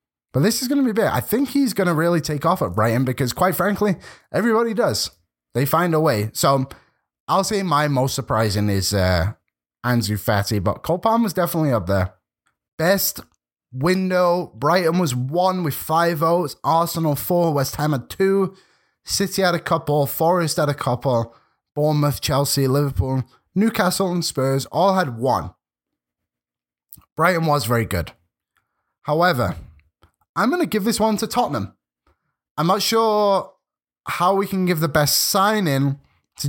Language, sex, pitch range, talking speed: English, male, 120-175 Hz, 160 wpm